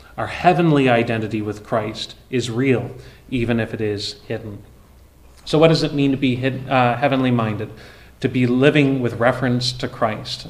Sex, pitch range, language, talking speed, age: male, 115-130 Hz, English, 165 wpm, 30-49